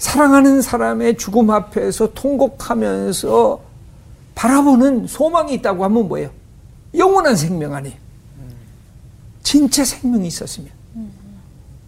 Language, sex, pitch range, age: Korean, male, 145-220 Hz, 60-79